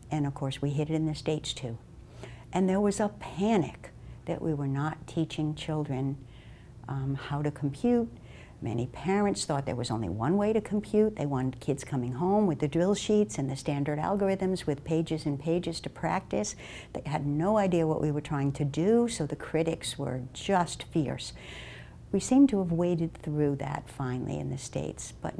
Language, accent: English, American